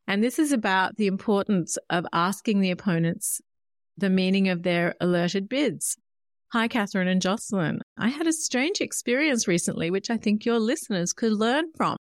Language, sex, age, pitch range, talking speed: English, female, 40-59, 185-250 Hz, 170 wpm